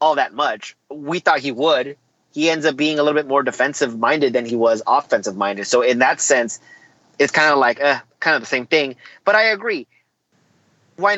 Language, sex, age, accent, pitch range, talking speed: English, male, 30-49, American, 150-215 Hz, 215 wpm